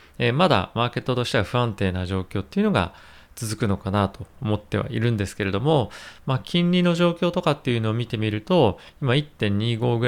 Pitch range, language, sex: 100-135 Hz, Japanese, male